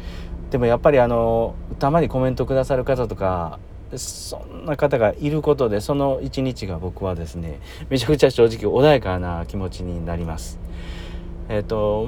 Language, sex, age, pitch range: Japanese, male, 40-59, 90-115 Hz